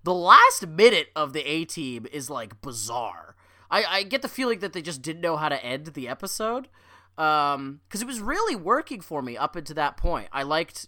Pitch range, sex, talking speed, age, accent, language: 140-205 Hz, male, 210 wpm, 20-39, American, English